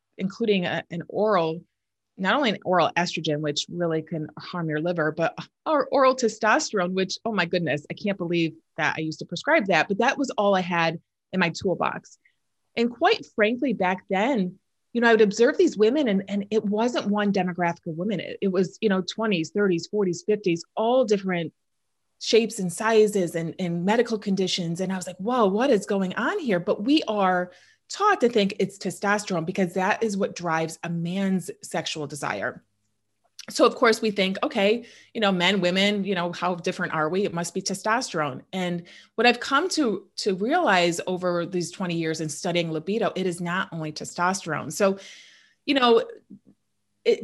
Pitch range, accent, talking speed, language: 170-220 Hz, American, 190 wpm, English